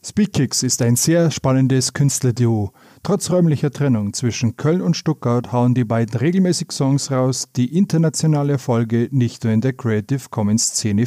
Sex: male